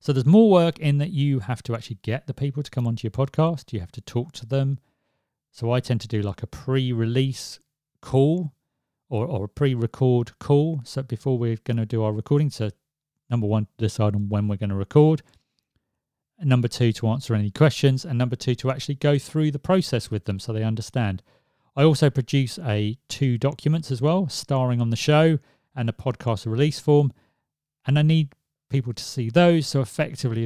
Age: 40-59